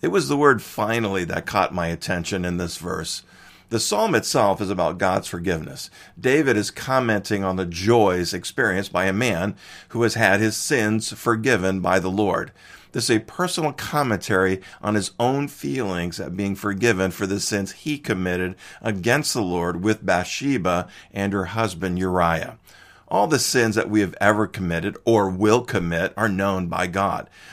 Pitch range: 95-110 Hz